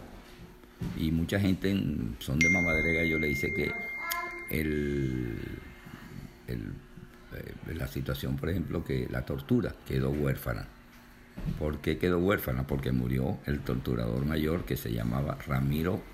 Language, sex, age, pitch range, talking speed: Spanish, male, 50-69, 65-85 Hz, 135 wpm